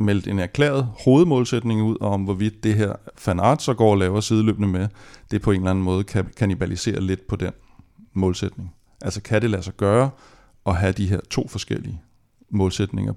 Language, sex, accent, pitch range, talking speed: Danish, male, native, 100-120 Hz, 190 wpm